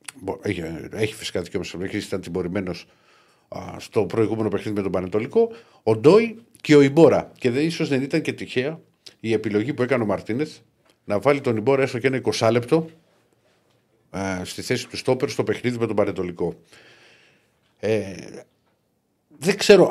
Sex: male